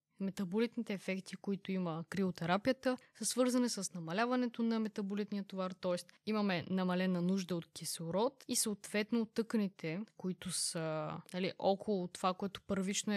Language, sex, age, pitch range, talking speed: Bulgarian, female, 20-39, 175-210 Hz, 130 wpm